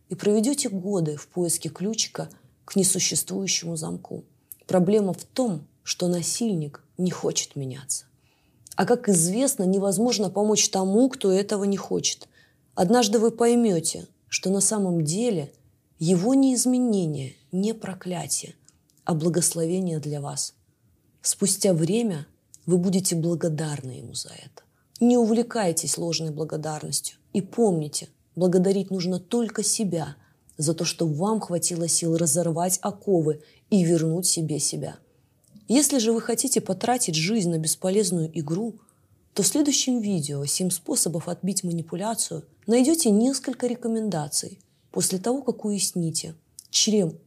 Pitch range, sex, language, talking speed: 160-210 Hz, female, Russian, 125 wpm